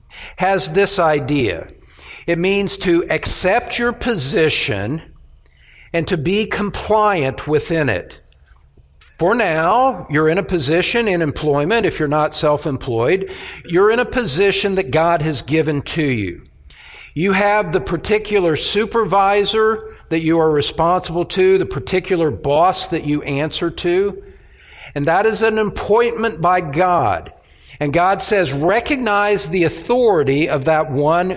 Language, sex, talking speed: English, male, 135 wpm